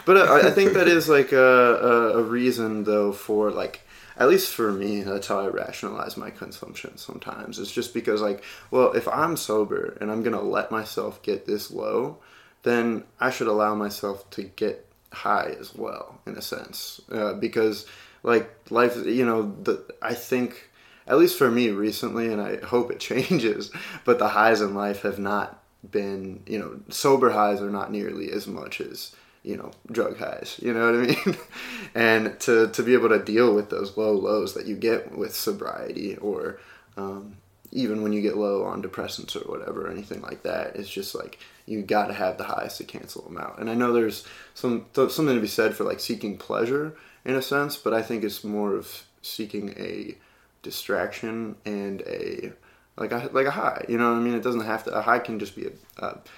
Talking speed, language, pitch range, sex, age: 205 wpm, English, 105-120 Hz, male, 20-39